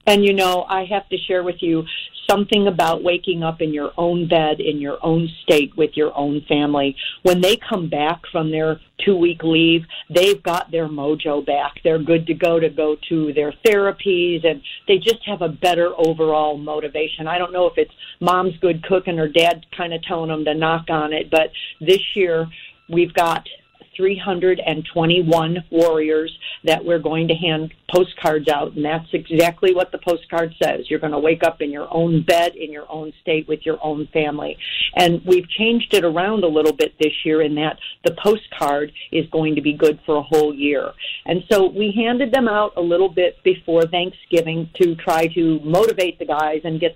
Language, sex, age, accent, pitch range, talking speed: English, female, 50-69, American, 155-180 Hz, 195 wpm